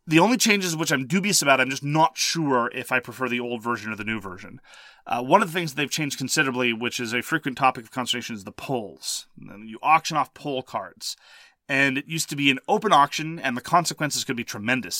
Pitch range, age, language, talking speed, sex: 125-160 Hz, 30-49, English, 245 wpm, male